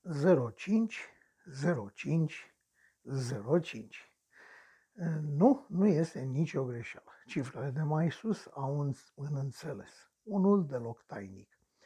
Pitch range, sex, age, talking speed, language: 140-190 Hz, male, 60-79, 95 wpm, Romanian